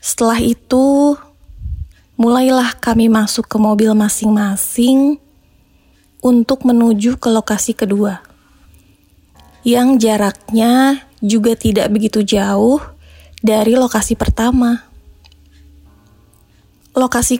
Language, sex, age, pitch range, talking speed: Indonesian, female, 20-39, 200-250 Hz, 80 wpm